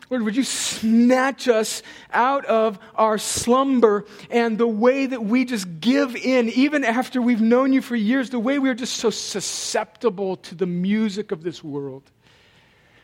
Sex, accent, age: male, American, 40-59